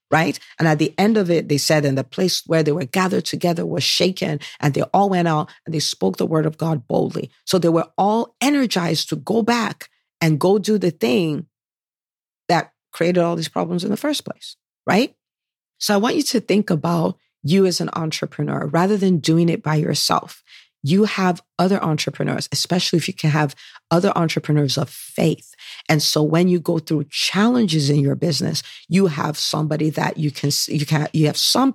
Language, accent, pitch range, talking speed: English, American, 145-175 Hz, 200 wpm